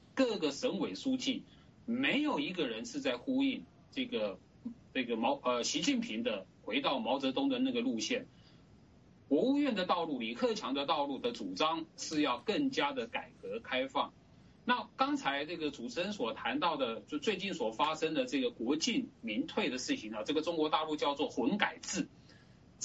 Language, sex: English, male